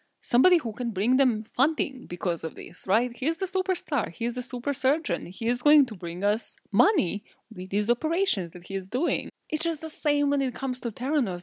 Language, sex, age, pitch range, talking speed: English, female, 20-39, 190-250 Hz, 210 wpm